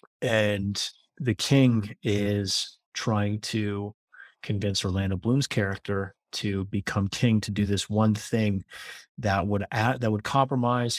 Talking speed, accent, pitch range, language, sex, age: 120 wpm, American, 100-115 Hz, English, male, 30-49